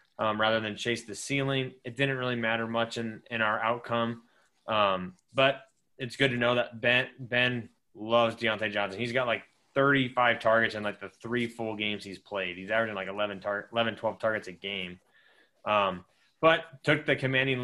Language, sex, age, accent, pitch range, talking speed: English, male, 20-39, American, 110-130 Hz, 185 wpm